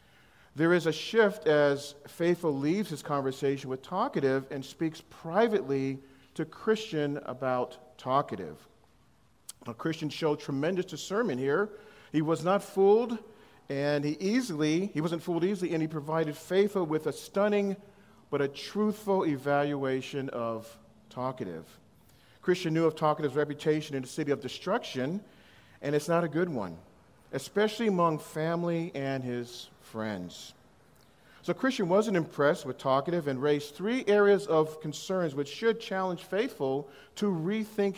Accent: American